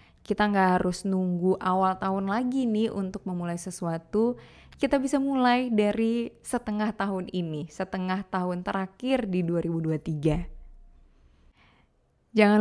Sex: female